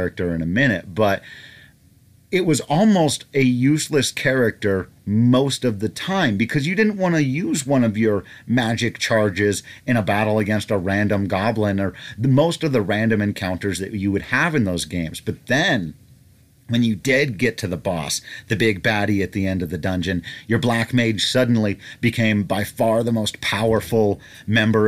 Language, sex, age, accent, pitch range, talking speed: English, male, 40-59, American, 100-125 Hz, 180 wpm